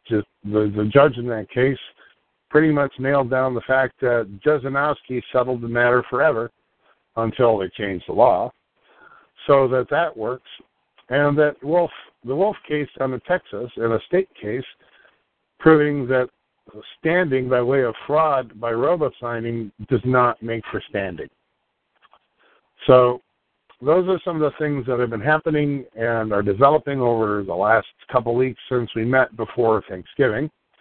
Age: 50-69